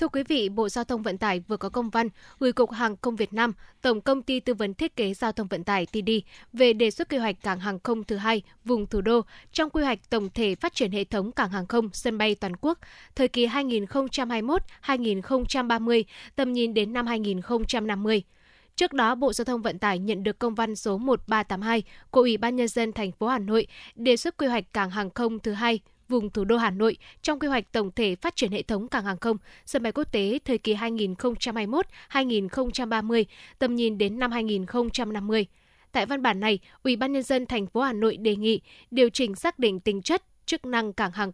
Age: 10-29